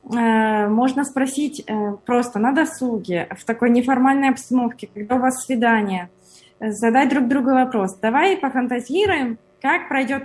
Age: 20-39